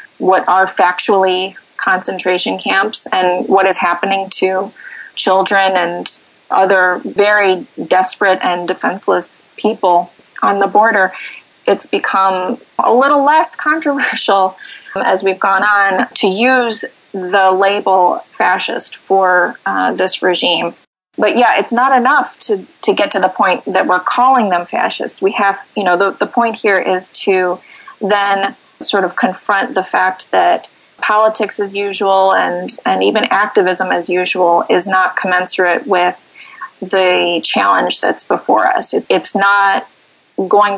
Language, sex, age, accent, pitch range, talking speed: English, female, 20-39, American, 185-210 Hz, 140 wpm